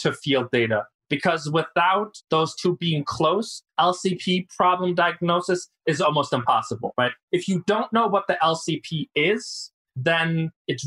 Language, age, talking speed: English, 20-39, 145 wpm